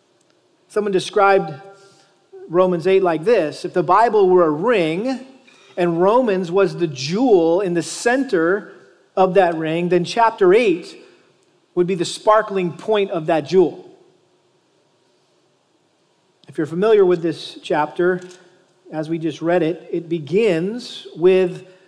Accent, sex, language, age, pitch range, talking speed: American, male, English, 40-59, 175-210 Hz, 130 wpm